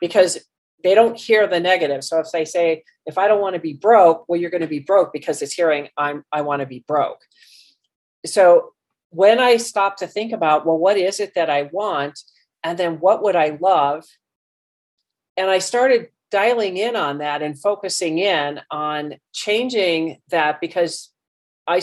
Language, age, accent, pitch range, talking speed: English, 40-59, American, 150-190 Hz, 185 wpm